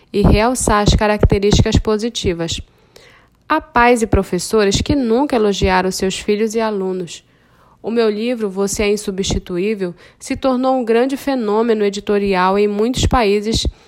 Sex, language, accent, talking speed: female, Portuguese, Brazilian, 135 wpm